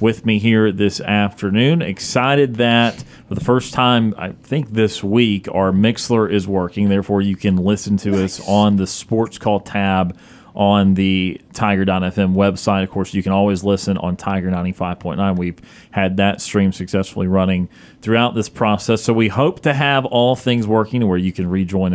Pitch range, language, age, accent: 95-115 Hz, English, 30-49, American